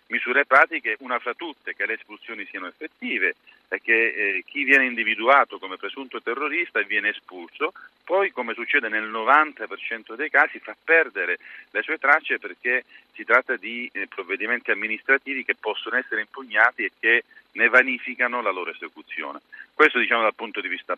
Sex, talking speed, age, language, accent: male, 165 wpm, 40-59, Italian, native